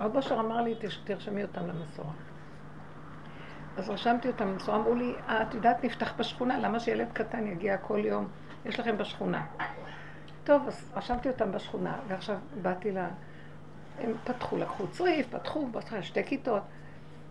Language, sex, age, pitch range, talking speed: Hebrew, female, 60-79, 185-230 Hz, 145 wpm